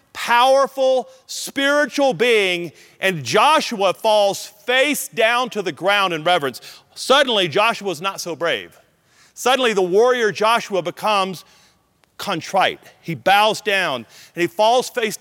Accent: American